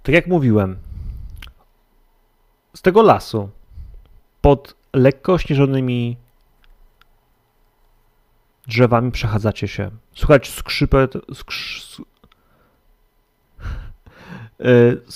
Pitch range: 110-140 Hz